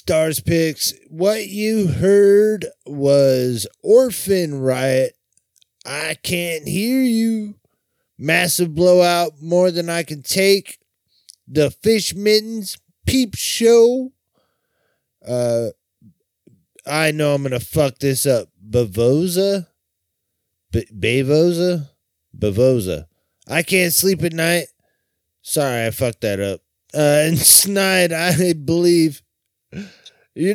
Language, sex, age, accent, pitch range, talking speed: English, male, 30-49, American, 120-180 Hz, 100 wpm